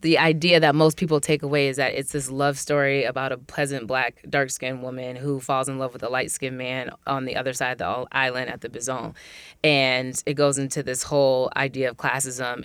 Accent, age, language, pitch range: American, 20-39, English, 130-145 Hz